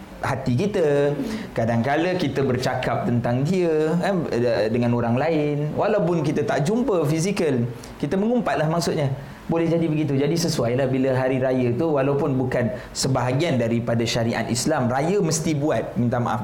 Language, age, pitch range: Malay, 20-39, 125-165 Hz